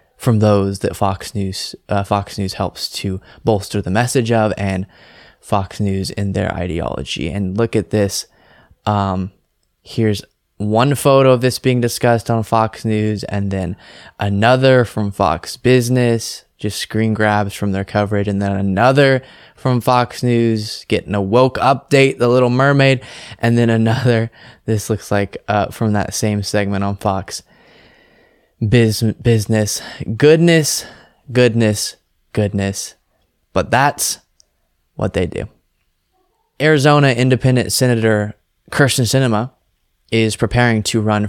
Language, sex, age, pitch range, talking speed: English, male, 20-39, 100-125 Hz, 130 wpm